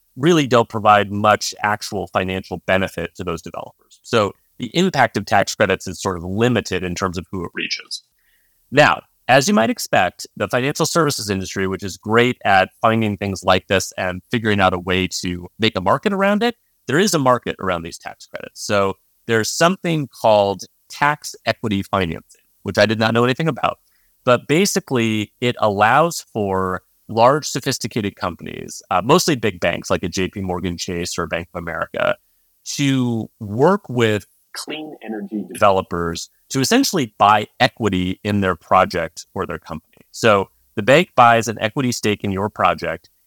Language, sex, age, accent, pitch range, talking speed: English, male, 30-49, American, 95-125 Hz, 170 wpm